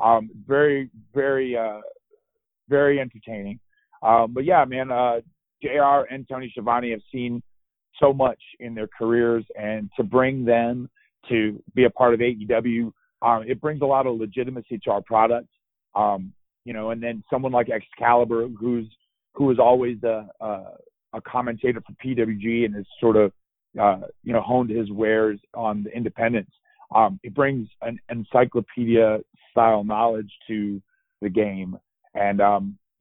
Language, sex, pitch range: English, male, 110-125 Hz